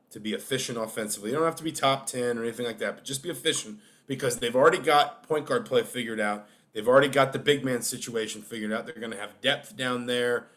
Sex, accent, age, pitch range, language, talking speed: male, American, 30-49, 120-155 Hz, English, 250 wpm